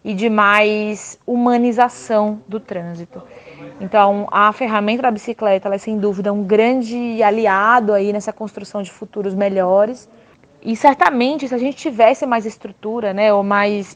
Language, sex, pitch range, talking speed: Portuguese, female, 205-245 Hz, 150 wpm